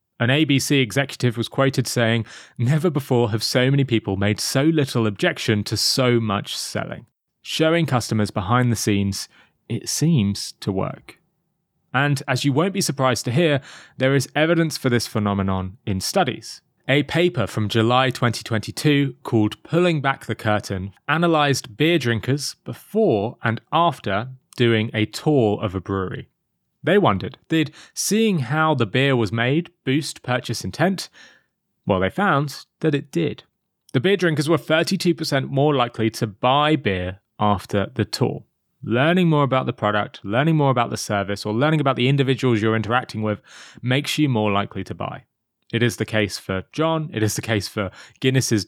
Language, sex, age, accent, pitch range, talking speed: English, male, 30-49, British, 110-150 Hz, 165 wpm